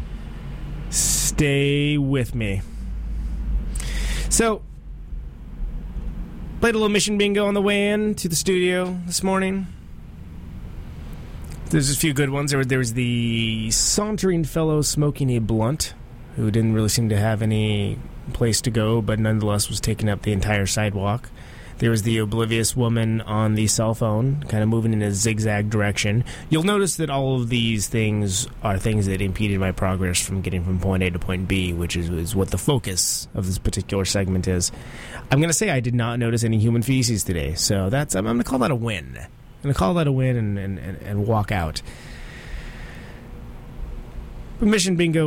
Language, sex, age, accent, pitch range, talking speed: English, male, 30-49, American, 95-135 Hz, 180 wpm